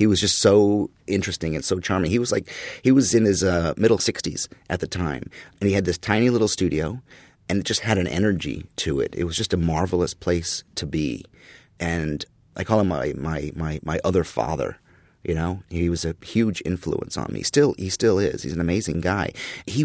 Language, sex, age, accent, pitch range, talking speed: English, male, 30-49, American, 85-115 Hz, 220 wpm